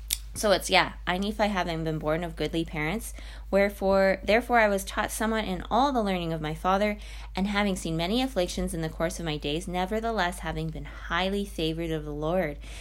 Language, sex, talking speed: English, female, 200 wpm